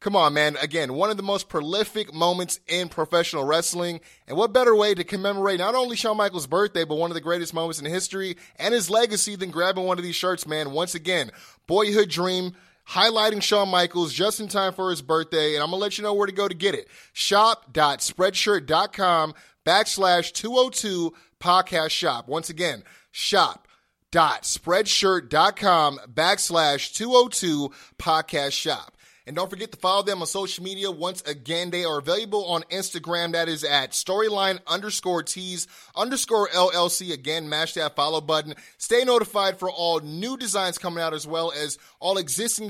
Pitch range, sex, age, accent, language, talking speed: 165-200 Hz, male, 20-39, American, English, 170 wpm